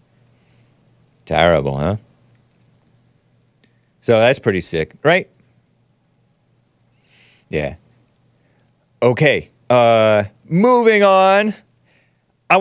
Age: 40-59